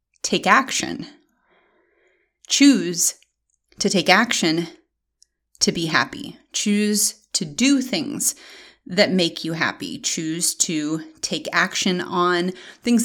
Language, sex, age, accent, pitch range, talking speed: English, female, 30-49, American, 175-240 Hz, 105 wpm